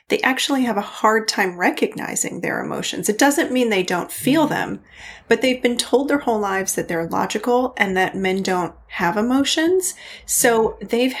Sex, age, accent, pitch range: female, 30-49, American, 185-245 Hz